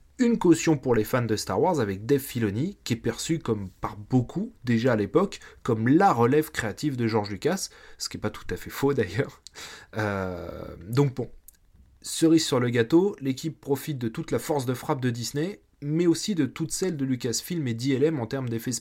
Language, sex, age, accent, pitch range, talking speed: French, male, 30-49, French, 110-150 Hz, 205 wpm